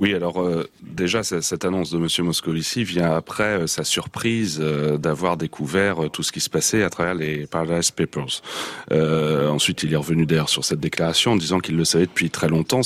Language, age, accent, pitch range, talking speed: French, 40-59, French, 85-110 Hz, 210 wpm